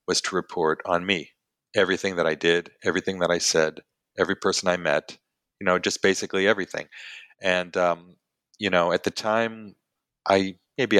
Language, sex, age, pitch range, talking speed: English, male, 40-59, 85-95 Hz, 170 wpm